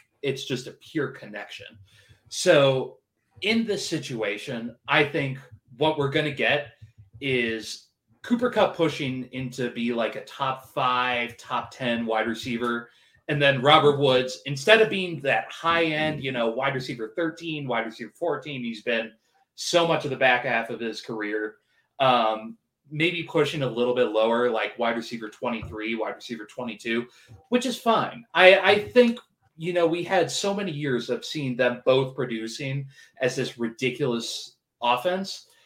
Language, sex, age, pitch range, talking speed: English, male, 20-39, 120-155 Hz, 160 wpm